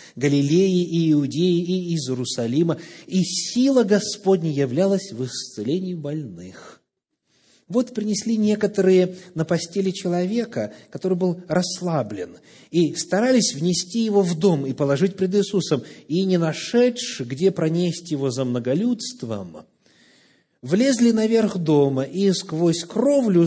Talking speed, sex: 120 wpm, male